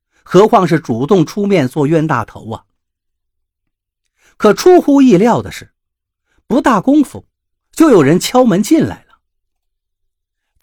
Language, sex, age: Chinese, male, 50-69